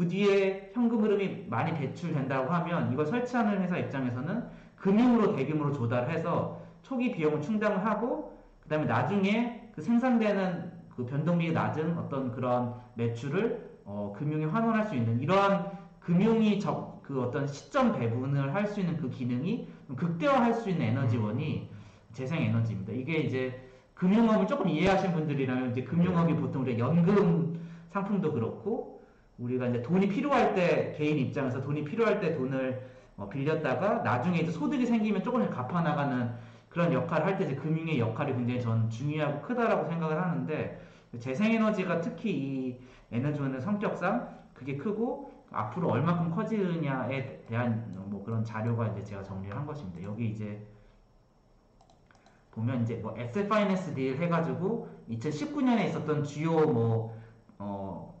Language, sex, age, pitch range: Korean, male, 40-59, 125-195 Hz